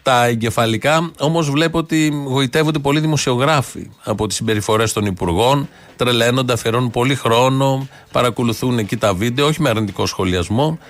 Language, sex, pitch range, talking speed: Greek, male, 110-145 Hz, 140 wpm